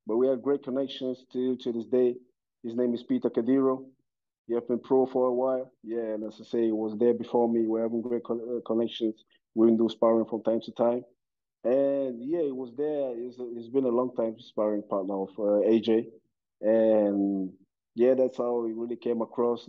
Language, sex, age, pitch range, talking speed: English, male, 20-39, 105-120 Hz, 200 wpm